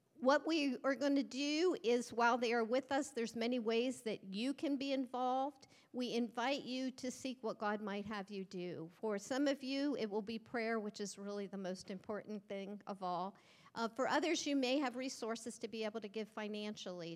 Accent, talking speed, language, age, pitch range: American, 215 wpm, English, 50-69, 205-250 Hz